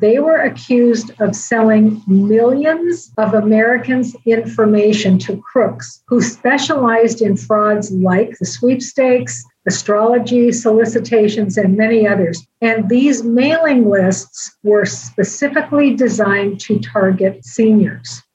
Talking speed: 110 wpm